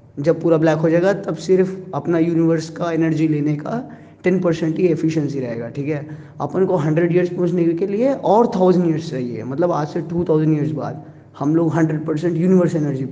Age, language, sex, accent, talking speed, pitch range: 20-39, Hindi, male, native, 200 wpm, 145-175 Hz